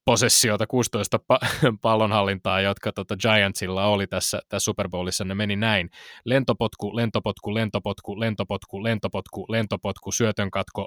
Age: 20-39